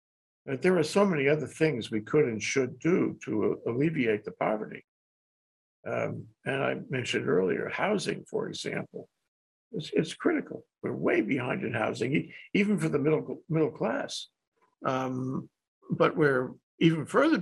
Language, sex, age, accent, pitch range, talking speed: English, male, 60-79, American, 130-175 Hz, 150 wpm